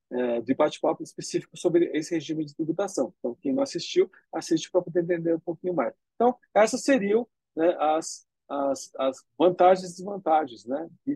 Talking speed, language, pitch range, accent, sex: 165 wpm, Portuguese, 145-200 Hz, Brazilian, male